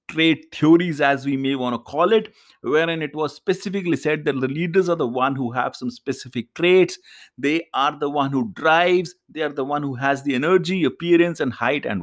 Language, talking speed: English, 215 wpm